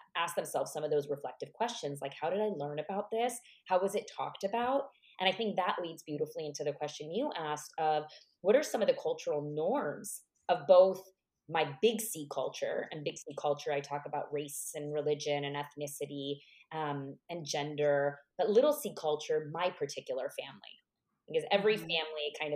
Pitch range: 145-215 Hz